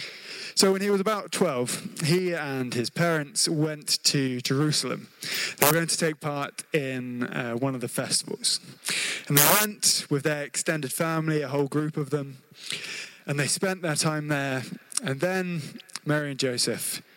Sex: male